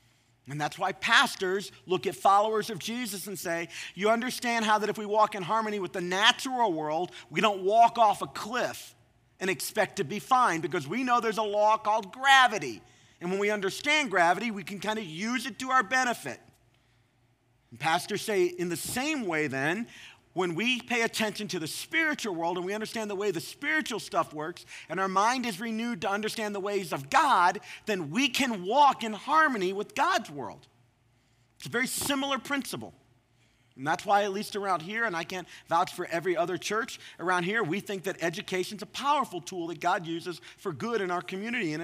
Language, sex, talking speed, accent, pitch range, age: English, male, 200 wpm, American, 160-225 Hz, 40-59